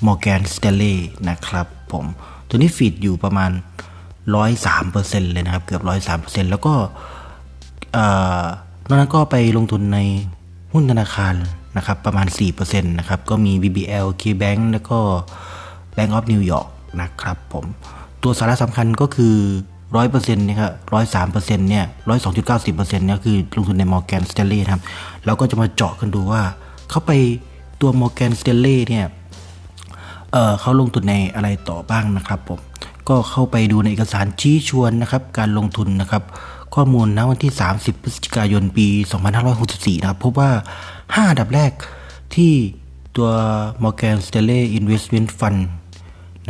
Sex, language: male, Thai